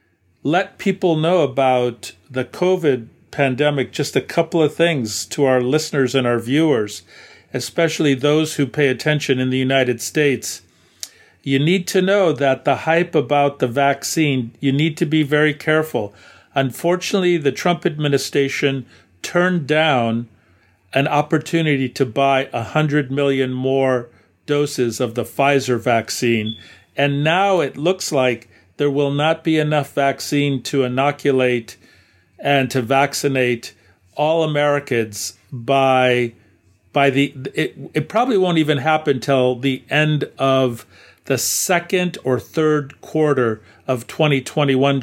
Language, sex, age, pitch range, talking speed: English, male, 50-69, 125-155 Hz, 130 wpm